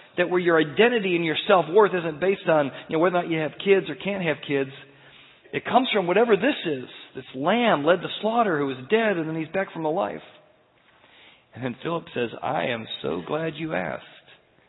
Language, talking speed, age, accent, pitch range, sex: English, 215 wpm, 40-59, American, 135-180 Hz, male